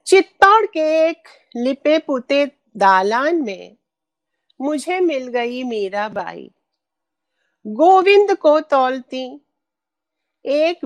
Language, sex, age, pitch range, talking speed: Hindi, female, 50-69, 235-320 Hz, 90 wpm